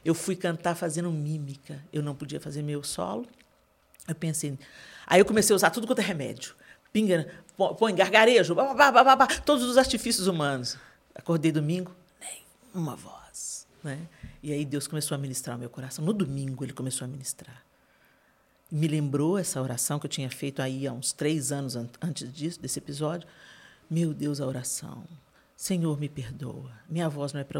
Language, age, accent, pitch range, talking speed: Portuguese, 50-69, Brazilian, 140-165 Hz, 175 wpm